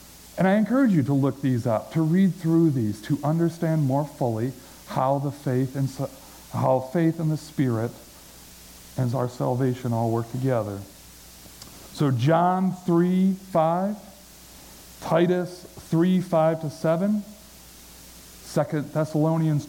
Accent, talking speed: American, 130 wpm